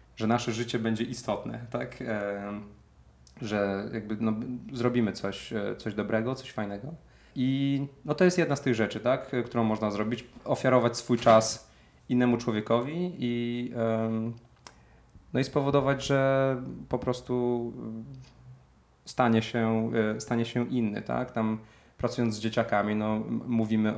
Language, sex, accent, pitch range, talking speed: Polish, male, native, 105-120 Hz, 130 wpm